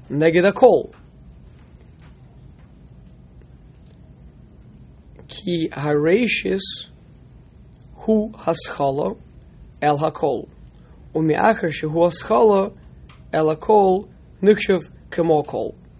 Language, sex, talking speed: English, male, 70 wpm